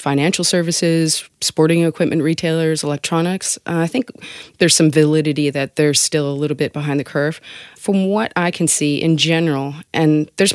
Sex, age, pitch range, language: female, 30-49, 145-170 Hz, English